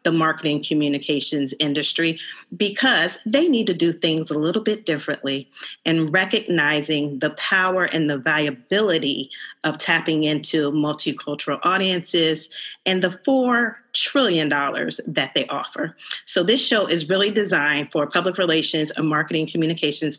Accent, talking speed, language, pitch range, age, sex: American, 135 wpm, English, 155-190 Hz, 40-59, female